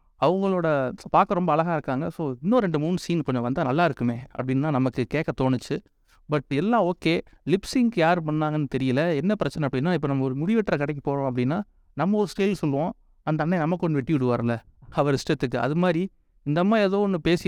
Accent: native